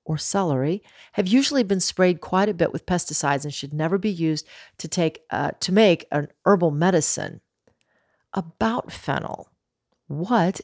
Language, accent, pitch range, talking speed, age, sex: English, American, 155-215 Hz, 150 wpm, 40-59, female